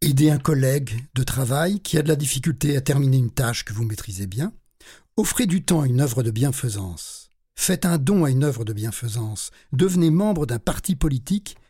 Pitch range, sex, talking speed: 120-175 Hz, male, 200 wpm